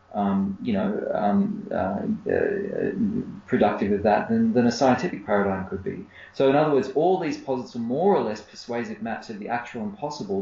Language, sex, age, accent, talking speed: English, male, 30-49, Australian, 195 wpm